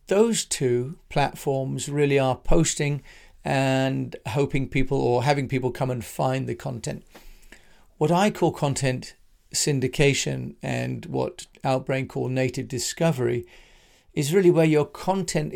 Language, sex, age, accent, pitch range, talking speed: English, male, 40-59, British, 125-155 Hz, 125 wpm